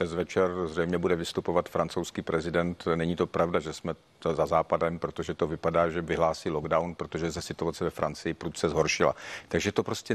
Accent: native